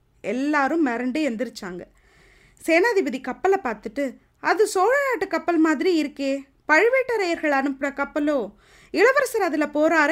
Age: 20-39